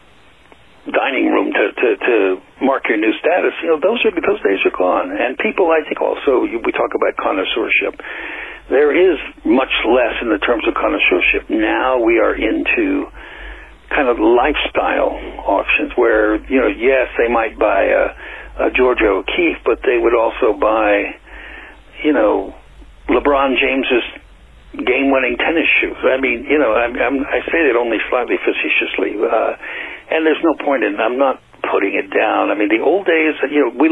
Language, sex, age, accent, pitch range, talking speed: English, male, 60-79, American, 330-440 Hz, 175 wpm